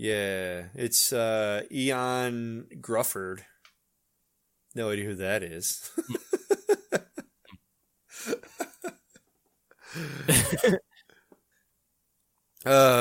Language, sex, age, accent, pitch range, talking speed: English, male, 20-39, American, 105-135 Hz, 50 wpm